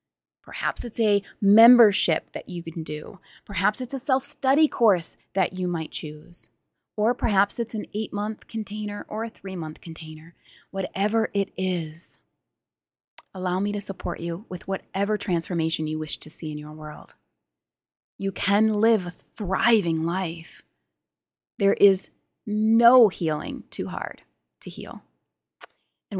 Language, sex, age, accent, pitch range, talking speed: English, female, 30-49, American, 180-230 Hz, 135 wpm